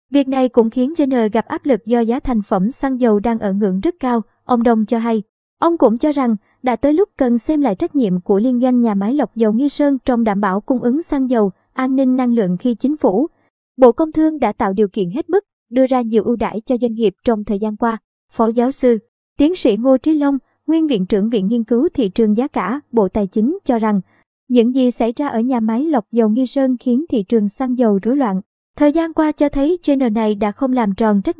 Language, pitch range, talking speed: Vietnamese, 220-270 Hz, 250 wpm